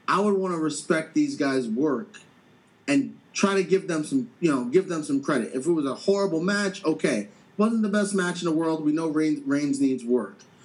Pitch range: 155-210 Hz